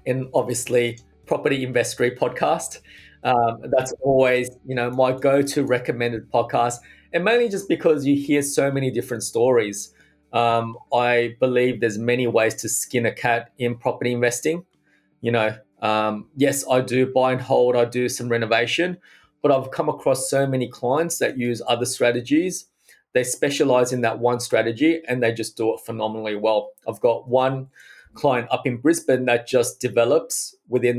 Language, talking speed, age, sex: English, 165 wpm, 20-39, male